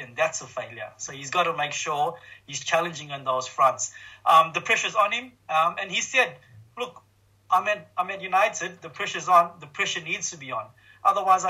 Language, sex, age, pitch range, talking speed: English, male, 30-49, 135-170 Hz, 210 wpm